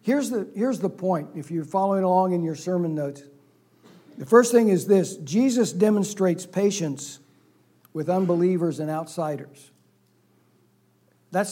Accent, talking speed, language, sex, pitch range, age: American, 130 wpm, English, male, 155-195 Hz, 60-79